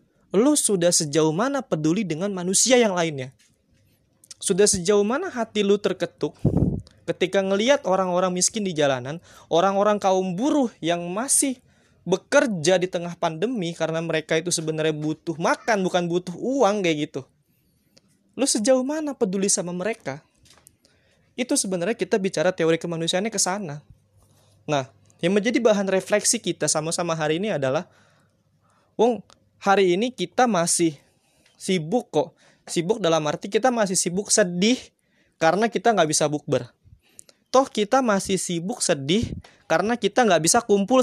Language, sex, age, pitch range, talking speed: Indonesian, male, 20-39, 160-220 Hz, 135 wpm